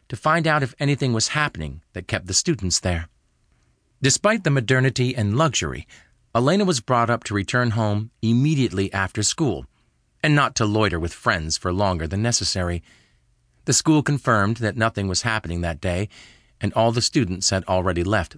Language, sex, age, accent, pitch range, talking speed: English, male, 40-59, American, 90-125 Hz, 175 wpm